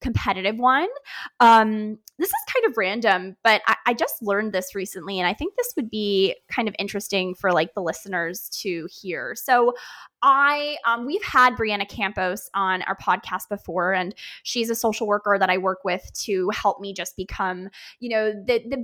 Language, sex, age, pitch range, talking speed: English, female, 20-39, 195-255 Hz, 190 wpm